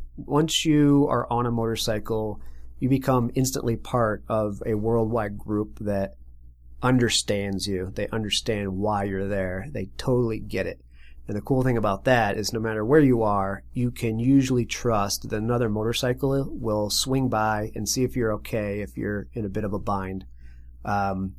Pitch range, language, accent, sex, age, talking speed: 100-125 Hz, English, American, male, 40-59, 175 wpm